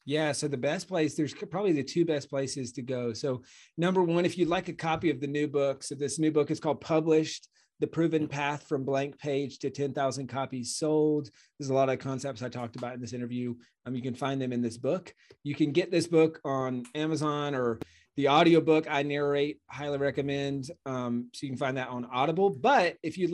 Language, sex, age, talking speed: English, male, 30-49, 220 wpm